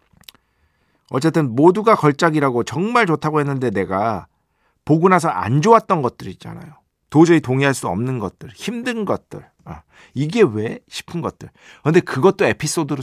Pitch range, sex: 105-170 Hz, male